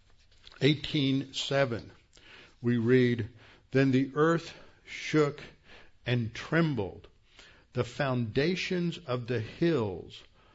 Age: 60-79